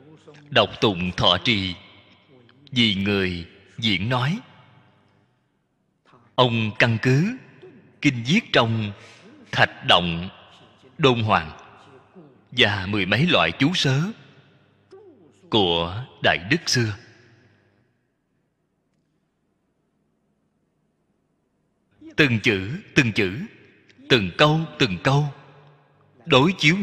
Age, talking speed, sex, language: 30-49, 85 wpm, male, Vietnamese